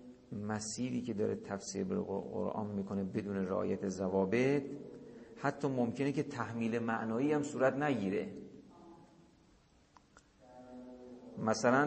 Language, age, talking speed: Persian, 50-69, 95 wpm